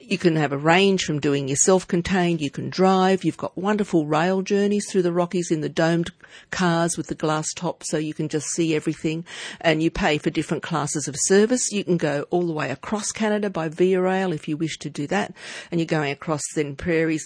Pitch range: 145-175 Hz